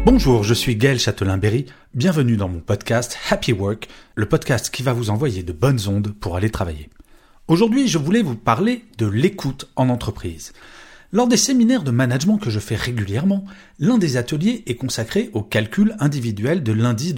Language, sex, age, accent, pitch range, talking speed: French, male, 40-59, French, 105-170 Hz, 180 wpm